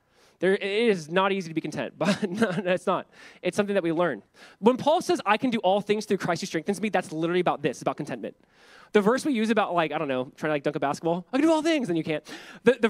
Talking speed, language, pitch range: 290 wpm, English, 155-230 Hz